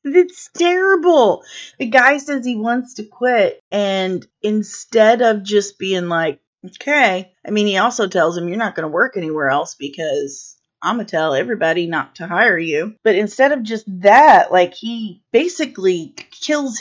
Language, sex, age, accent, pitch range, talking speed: English, female, 30-49, American, 175-235 Hz, 170 wpm